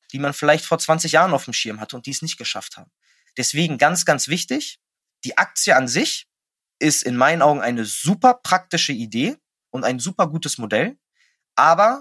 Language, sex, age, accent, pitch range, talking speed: German, male, 20-39, German, 140-190 Hz, 190 wpm